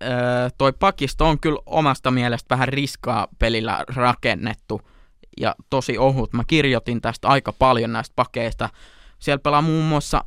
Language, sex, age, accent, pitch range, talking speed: Finnish, male, 20-39, native, 120-140 Hz, 140 wpm